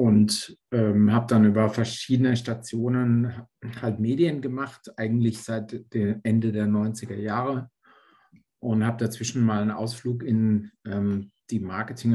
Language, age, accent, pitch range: German, 50-69, German, 110-125 Hz